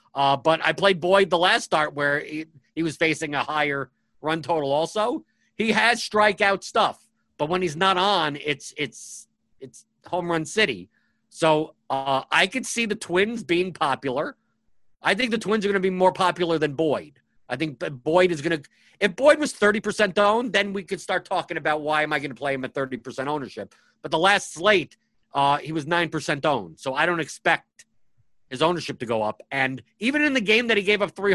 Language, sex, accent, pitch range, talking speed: English, male, American, 145-190 Hz, 210 wpm